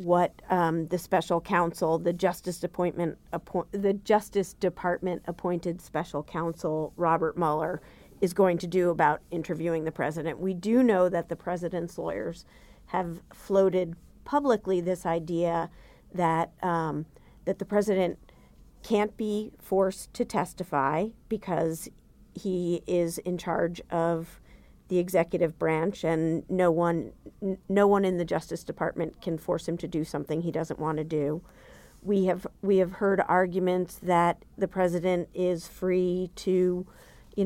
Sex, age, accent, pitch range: female, 40-59, American, 165-190 Hz